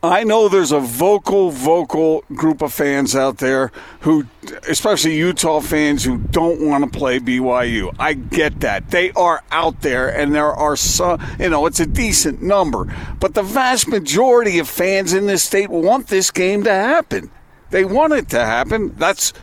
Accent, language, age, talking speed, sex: American, English, 50-69, 180 wpm, male